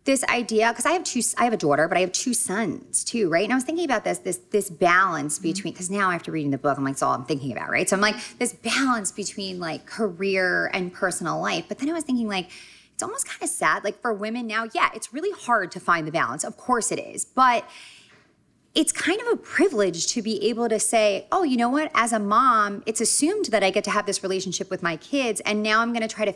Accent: American